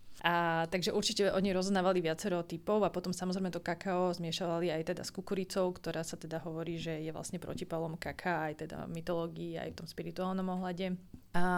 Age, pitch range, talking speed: 20-39, 170-190 Hz, 185 wpm